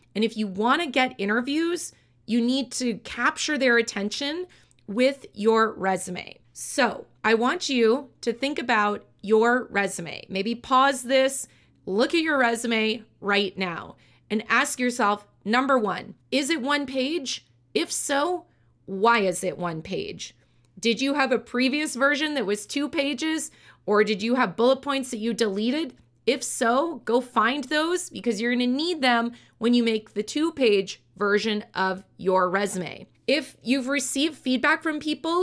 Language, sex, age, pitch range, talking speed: English, female, 30-49, 210-275 Hz, 160 wpm